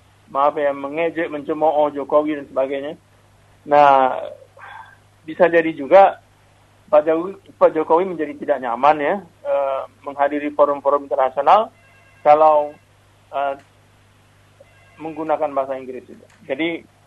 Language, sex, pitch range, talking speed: Indonesian, male, 130-165 Hz, 100 wpm